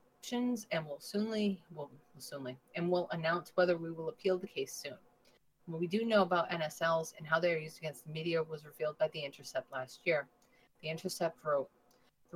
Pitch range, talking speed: 145-170 Hz, 200 wpm